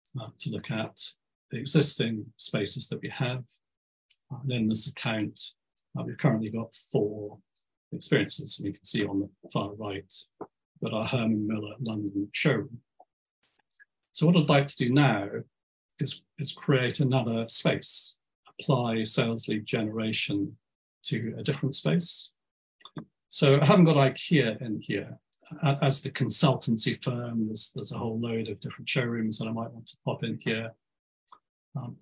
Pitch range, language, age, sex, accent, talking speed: 110-145 Hz, English, 40-59, male, British, 155 wpm